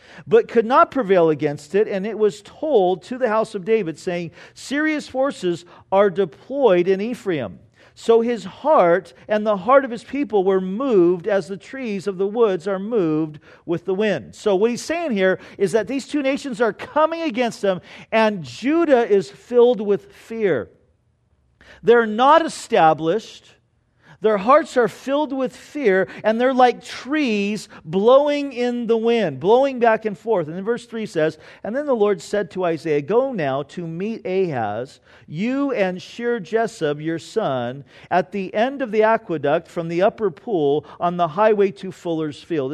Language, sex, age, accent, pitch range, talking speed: English, male, 50-69, American, 180-240 Hz, 175 wpm